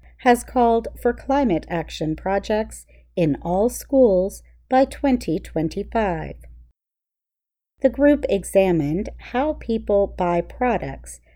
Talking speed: 95 wpm